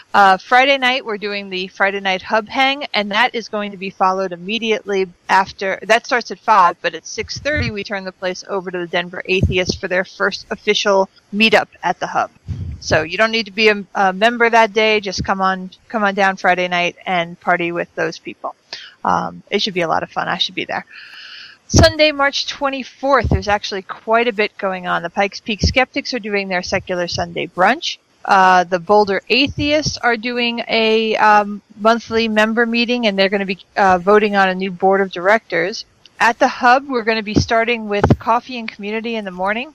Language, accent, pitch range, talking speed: English, American, 190-230 Hz, 210 wpm